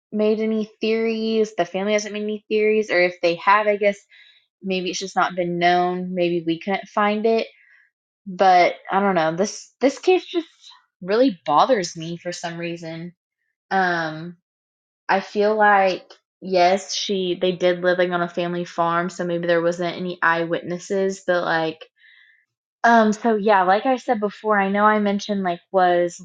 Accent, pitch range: American, 170-205 Hz